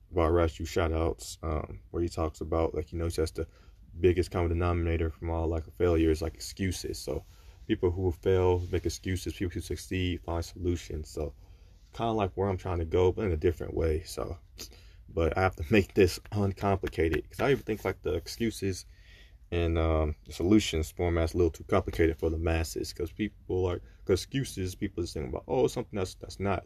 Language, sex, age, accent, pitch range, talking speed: English, male, 20-39, American, 80-95 Hz, 205 wpm